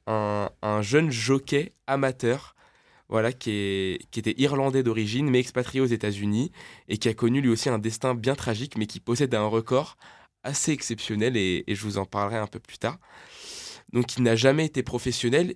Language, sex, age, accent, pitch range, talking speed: French, male, 20-39, French, 110-130 Hz, 195 wpm